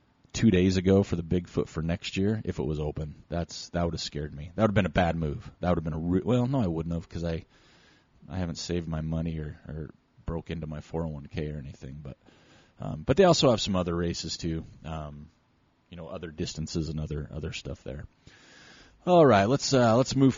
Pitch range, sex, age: 80-115 Hz, male, 30-49